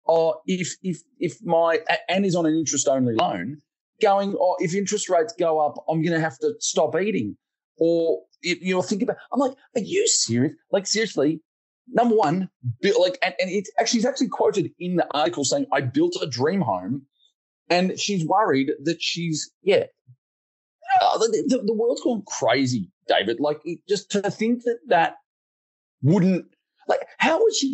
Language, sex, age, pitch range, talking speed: English, male, 30-49, 140-215 Hz, 185 wpm